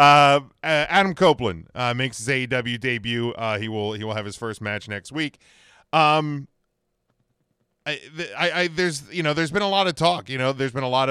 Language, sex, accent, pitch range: English, male, American, 105-130 Hz